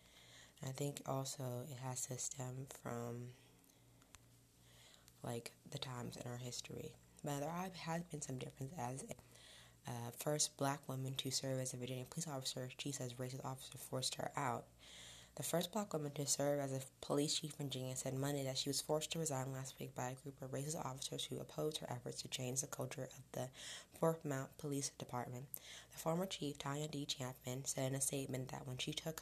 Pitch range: 125-150 Hz